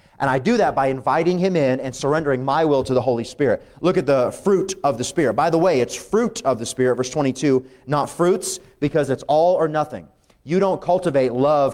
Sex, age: male, 30-49